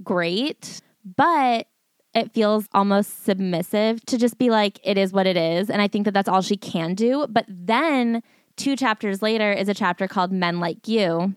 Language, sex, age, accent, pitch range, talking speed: English, female, 20-39, American, 180-215 Hz, 190 wpm